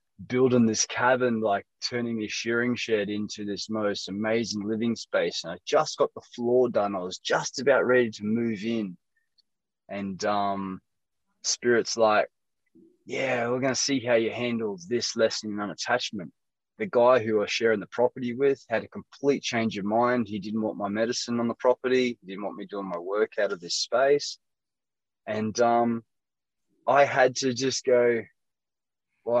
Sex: male